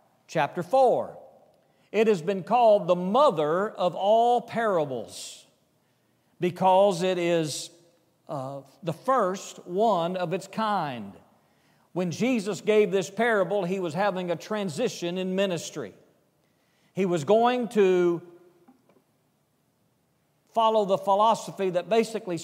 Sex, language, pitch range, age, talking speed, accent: male, English, 170-215 Hz, 50-69, 110 wpm, American